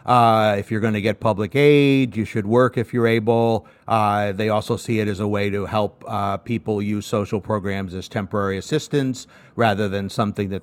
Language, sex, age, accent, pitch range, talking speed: English, male, 50-69, American, 105-125 Hz, 205 wpm